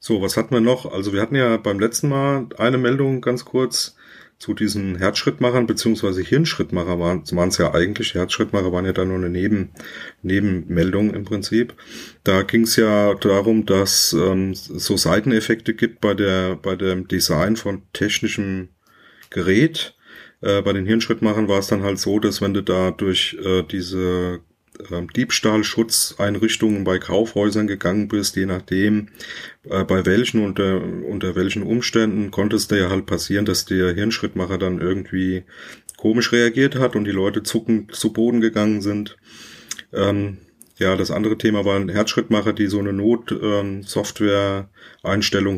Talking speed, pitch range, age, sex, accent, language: 155 wpm, 95-110 Hz, 30-49, male, German, German